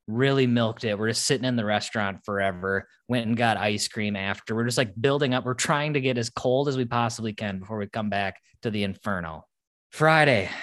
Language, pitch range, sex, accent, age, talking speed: English, 105-135 Hz, male, American, 20-39, 220 wpm